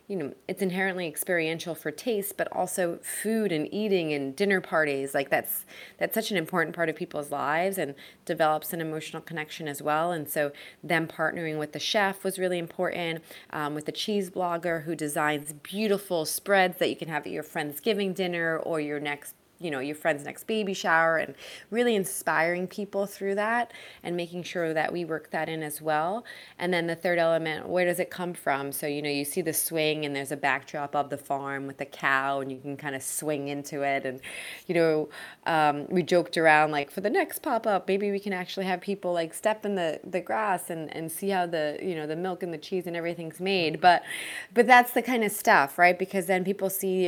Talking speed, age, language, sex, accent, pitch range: 220 wpm, 20-39, English, female, American, 150-185 Hz